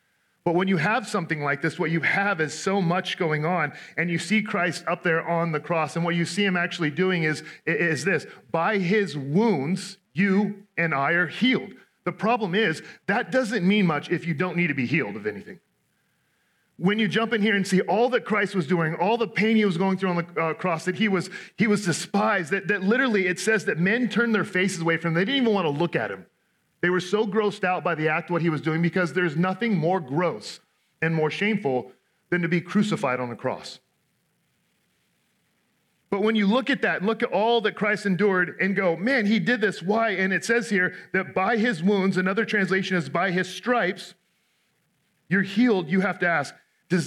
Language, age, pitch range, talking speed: English, 40-59, 170-210 Hz, 220 wpm